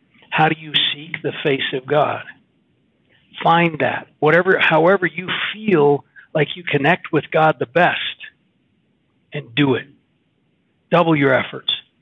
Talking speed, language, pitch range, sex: 135 wpm, English, 135-170 Hz, male